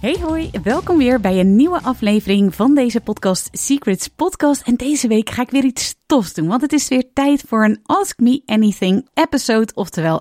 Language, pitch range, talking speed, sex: Dutch, 190-265 Hz, 200 wpm, female